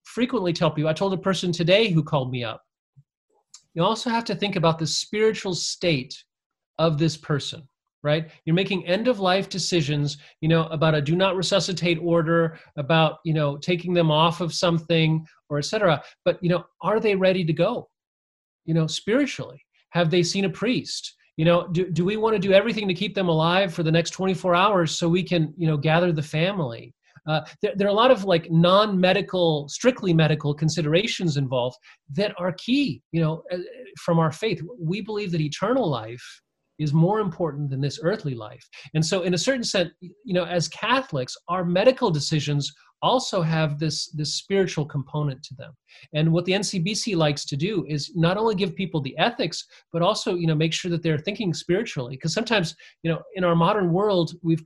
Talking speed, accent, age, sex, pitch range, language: 195 wpm, American, 30-49, male, 155-190 Hz, English